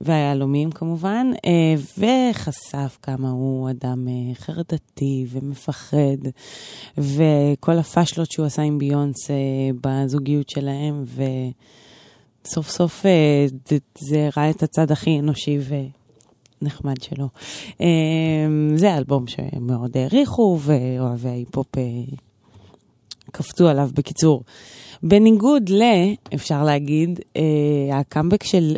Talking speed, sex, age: 85 wpm, female, 20-39